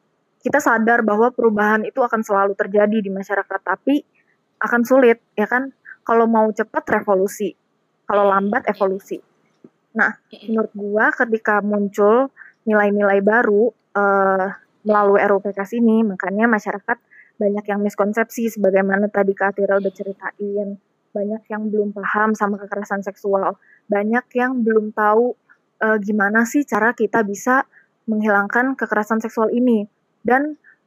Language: Indonesian